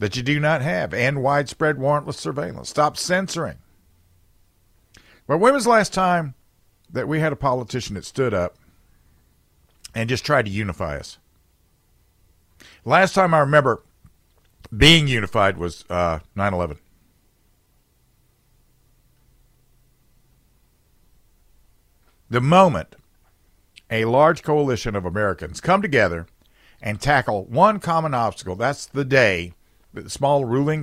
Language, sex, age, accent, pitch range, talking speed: English, male, 50-69, American, 85-145 Hz, 115 wpm